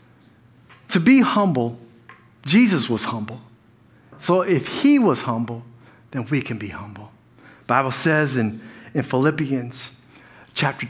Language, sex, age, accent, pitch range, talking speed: English, male, 50-69, American, 120-165 Hz, 120 wpm